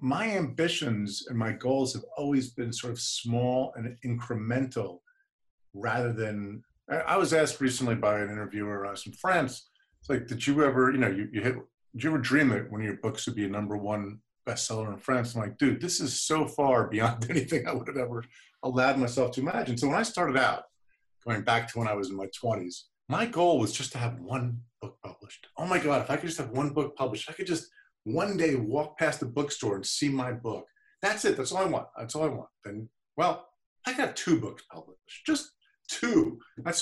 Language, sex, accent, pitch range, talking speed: English, male, American, 120-190 Hz, 225 wpm